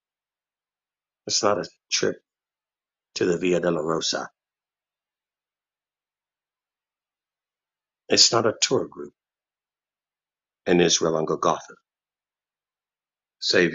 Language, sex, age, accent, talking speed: English, male, 60-79, American, 85 wpm